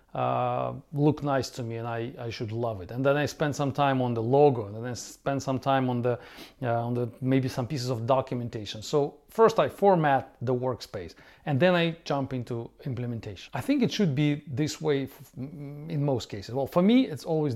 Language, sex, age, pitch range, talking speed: English, male, 40-59, 120-155 Hz, 220 wpm